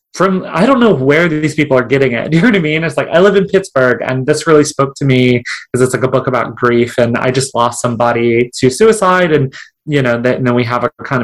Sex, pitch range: male, 125-160 Hz